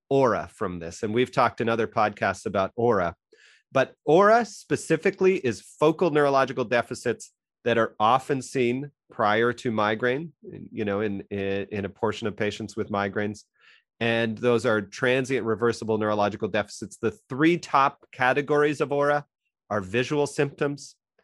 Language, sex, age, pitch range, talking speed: English, male, 30-49, 105-130 Hz, 145 wpm